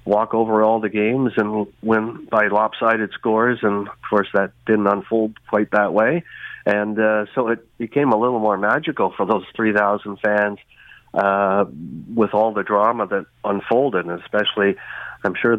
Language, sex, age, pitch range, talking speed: English, male, 50-69, 100-110 Hz, 170 wpm